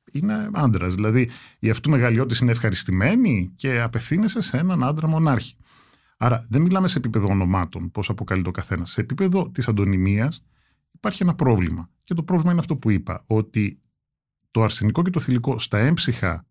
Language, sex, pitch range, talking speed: Greek, male, 100-140 Hz, 165 wpm